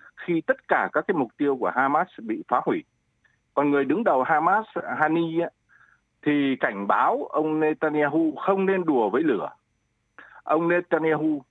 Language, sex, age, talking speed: Vietnamese, male, 60-79, 155 wpm